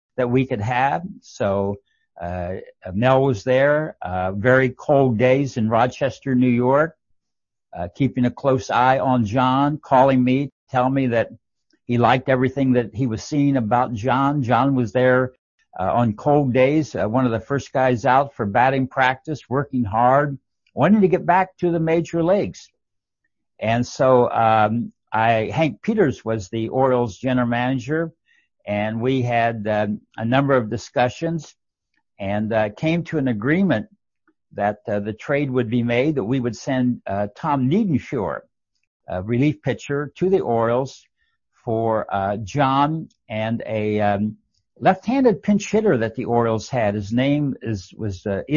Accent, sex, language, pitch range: American, male, English, 115-140 Hz